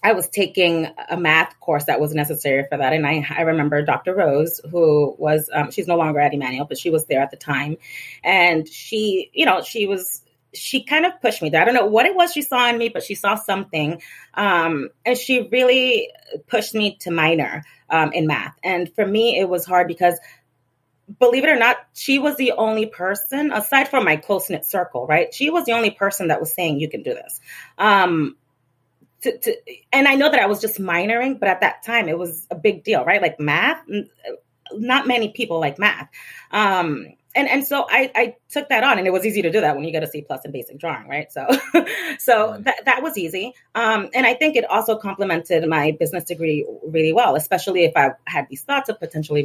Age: 30-49